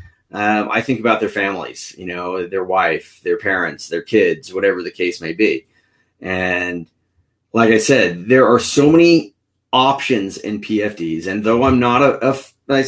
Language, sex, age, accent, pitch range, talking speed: English, male, 30-49, American, 100-125 Hz, 170 wpm